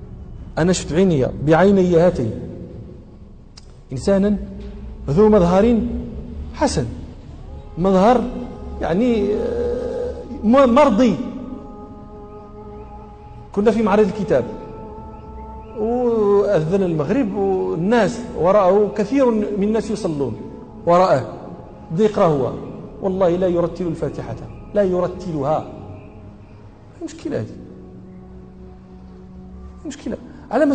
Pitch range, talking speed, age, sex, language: 180-245 Hz, 70 wpm, 40-59, male, Arabic